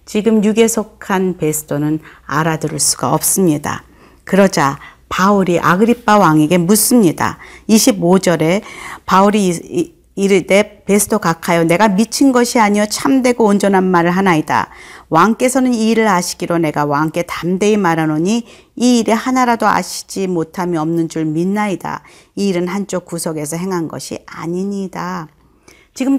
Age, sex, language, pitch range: 40-59, female, Korean, 170-230 Hz